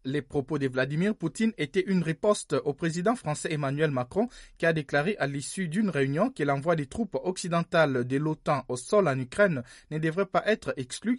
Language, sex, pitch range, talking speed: French, male, 135-185 Hz, 195 wpm